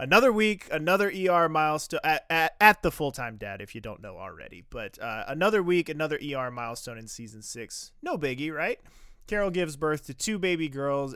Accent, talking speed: American, 190 wpm